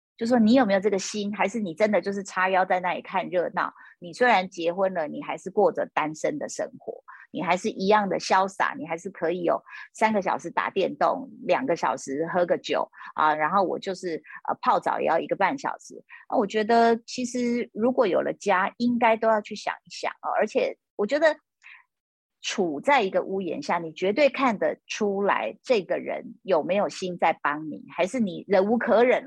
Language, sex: Chinese, female